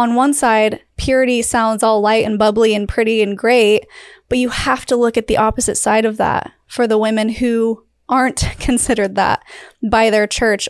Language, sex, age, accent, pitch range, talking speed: English, female, 20-39, American, 225-270 Hz, 190 wpm